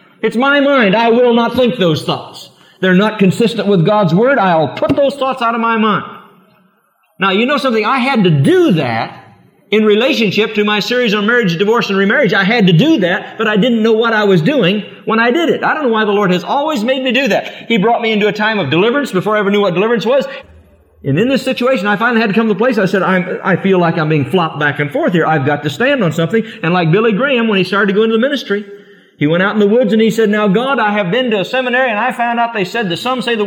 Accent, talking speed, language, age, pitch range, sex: American, 280 wpm, English, 50-69, 180-230 Hz, male